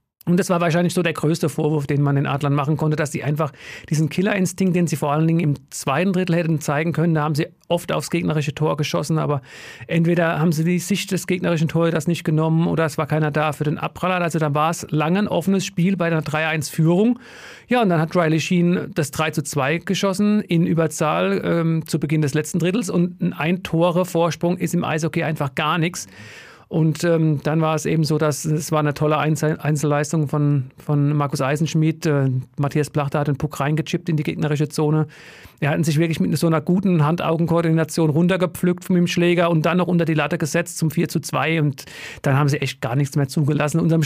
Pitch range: 150-175 Hz